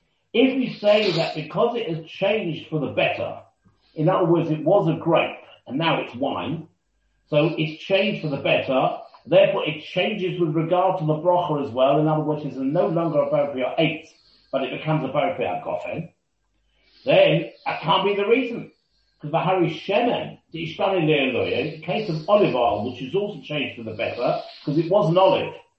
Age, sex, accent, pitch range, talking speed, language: 40-59, male, British, 155-195 Hz, 190 wpm, English